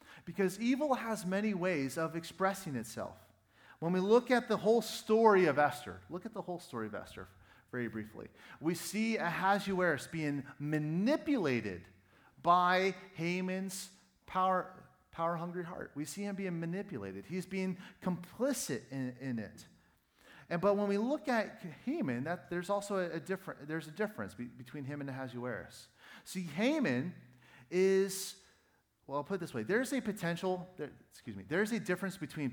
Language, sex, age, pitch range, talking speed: English, male, 40-59, 130-195 Hz, 160 wpm